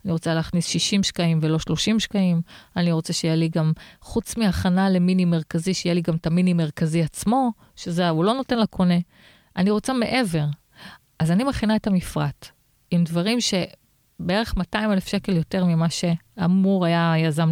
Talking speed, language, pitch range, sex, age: 160 wpm, Hebrew, 165-205 Hz, female, 30-49